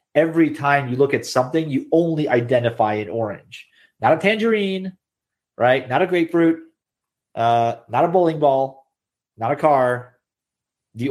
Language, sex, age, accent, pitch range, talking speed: English, male, 30-49, American, 115-160 Hz, 145 wpm